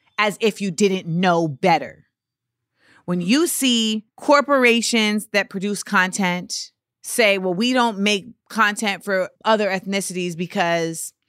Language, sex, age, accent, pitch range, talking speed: English, female, 30-49, American, 195-255 Hz, 120 wpm